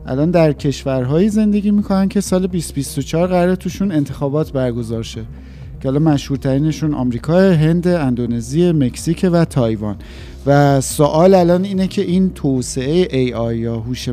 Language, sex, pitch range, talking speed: Persian, male, 130-180 Hz, 135 wpm